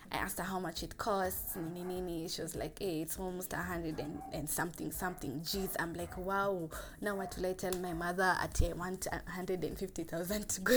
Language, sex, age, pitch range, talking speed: English, female, 20-39, 170-205 Hz, 195 wpm